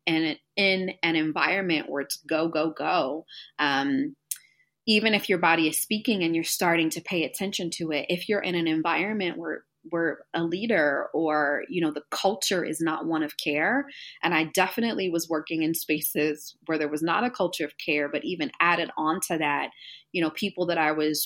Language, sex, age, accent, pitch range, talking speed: English, female, 20-39, American, 155-195 Hz, 200 wpm